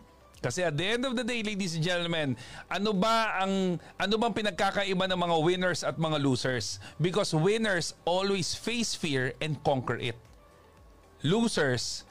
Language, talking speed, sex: Filipino, 155 wpm, male